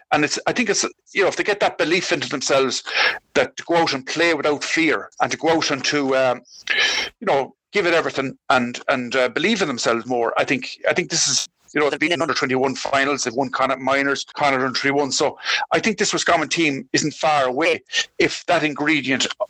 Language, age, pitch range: English, 50-69, 135-190 Hz